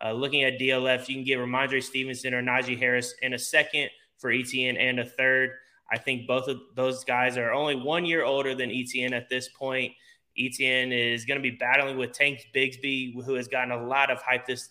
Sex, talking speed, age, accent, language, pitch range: male, 215 wpm, 20-39, American, English, 120-135 Hz